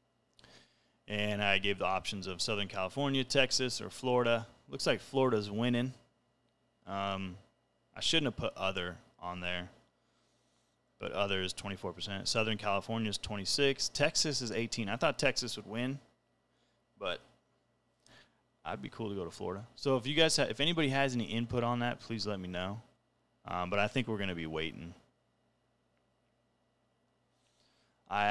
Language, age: English, 30-49